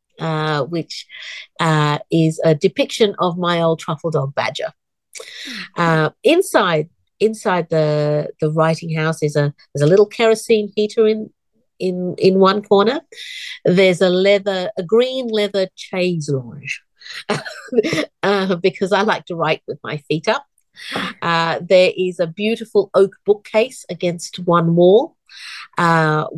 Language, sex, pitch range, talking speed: English, female, 155-205 Hz, 135 wpm